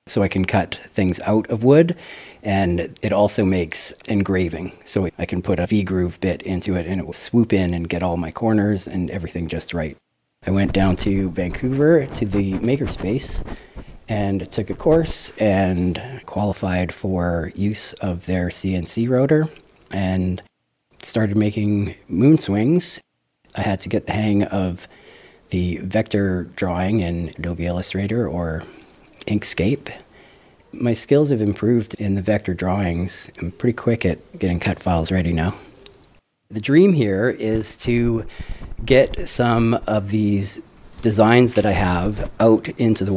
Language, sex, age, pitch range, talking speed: English, male, 30-49, 90-110 Hz, 155 wpm